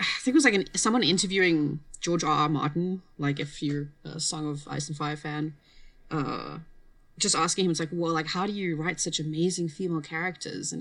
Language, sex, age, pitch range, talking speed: English, female, 20-39, 150-180 Hz, 215 wpm